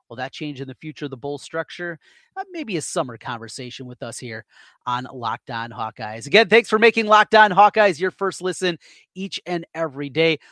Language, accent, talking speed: English, American, 200 wpm